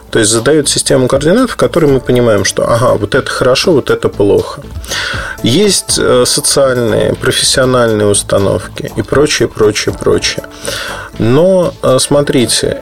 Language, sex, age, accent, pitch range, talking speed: Russian, male, 20-39, native, 110-145 Hz, 125 wpm